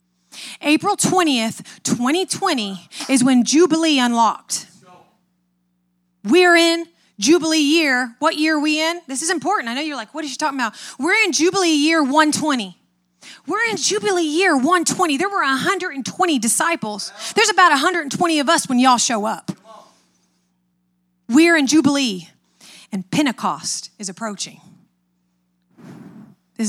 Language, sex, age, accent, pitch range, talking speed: English, female, 30-49, American, 205-310 Hz, 135 wpm